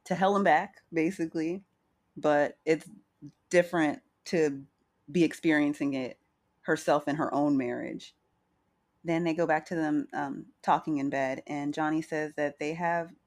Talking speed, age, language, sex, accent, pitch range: 150 wpm, 30-49, English, female, American, 150-190 Hz